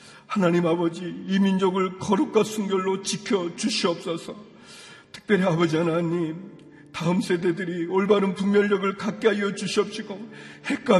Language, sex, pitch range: Korean, male, 175-210 Hz